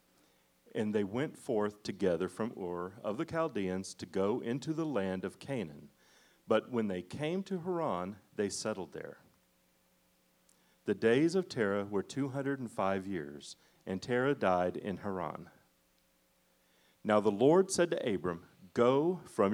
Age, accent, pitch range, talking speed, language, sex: 40-59, American, 90-135 Hz, 140 wpm, English, male